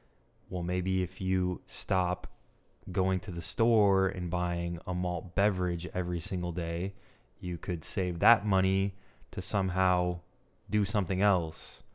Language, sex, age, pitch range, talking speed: English, male, 20-39, 90-105 Hz, 135 wpm